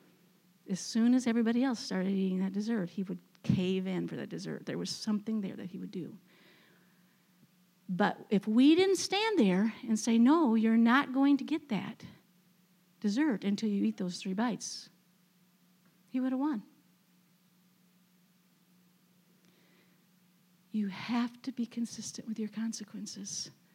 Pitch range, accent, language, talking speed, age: 180-230 Hz, American, English, 145 wpm, 50-69